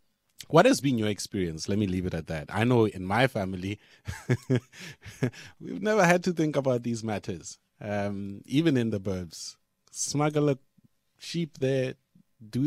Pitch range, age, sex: 95-120 Hz, 30-49, male